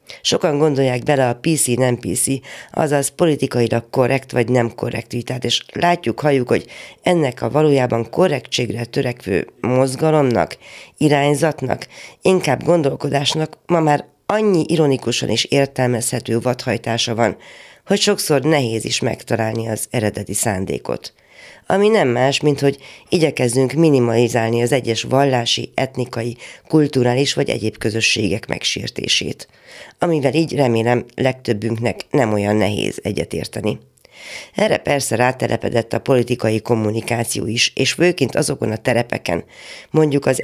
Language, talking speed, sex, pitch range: Hungarian, 120 wpm, female, 115-150 Hz